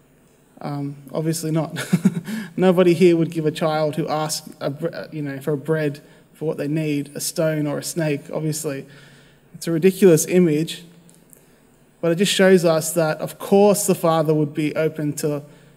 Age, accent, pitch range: 20-39, Australian, 150-175 Hz